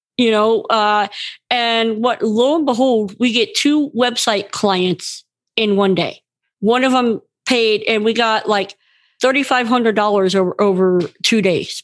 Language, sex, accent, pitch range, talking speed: English, female, American, 205-275 Hz, 145 wpm